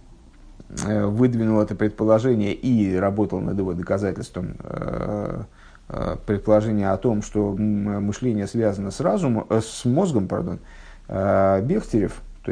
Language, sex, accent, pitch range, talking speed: Russian, male, native, 100-125 Hz, 100 wpm